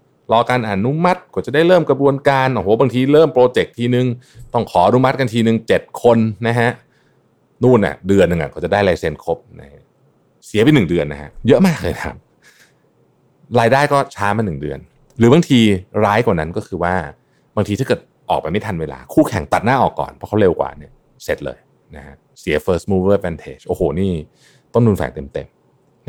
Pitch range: 95-140 Hz